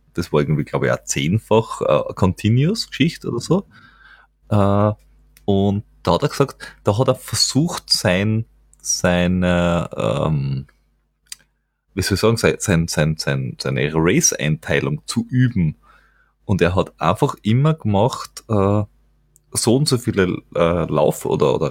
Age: 30-49